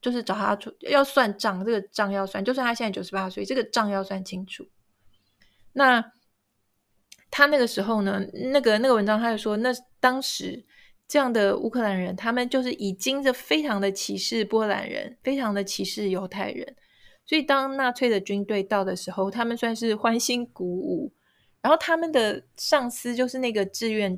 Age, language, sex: 20-39, Chinese, female